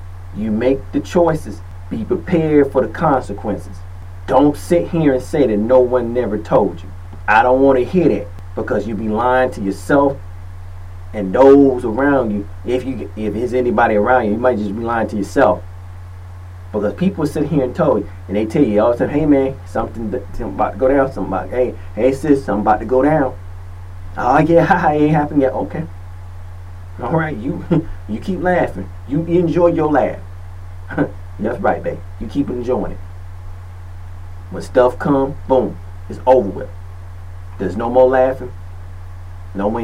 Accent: American